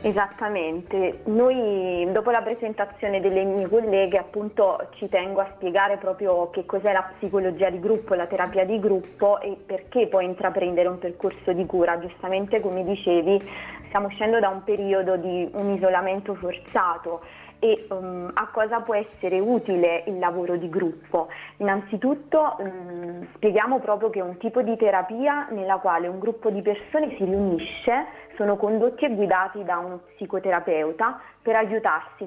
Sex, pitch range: female, 180-210 Hz